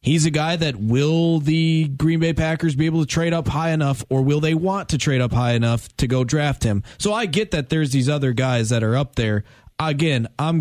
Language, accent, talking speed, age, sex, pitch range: English, American, 245 wpm, 20-39, male, 120-150 Hz